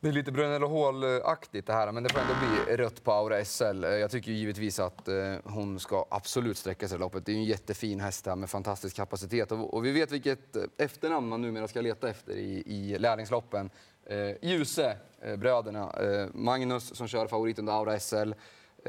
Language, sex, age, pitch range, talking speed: Swedish, male, 30-49, 100-125 Hz, 185 wpm